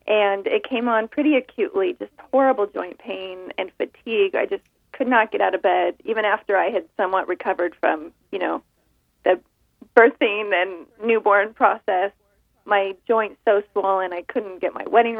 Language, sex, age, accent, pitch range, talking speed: English, female, 30-49, American, 195-265 Hz, 170 wpm